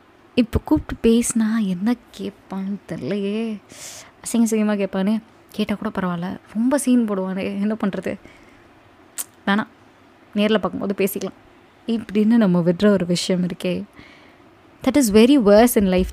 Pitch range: 195-245 Hz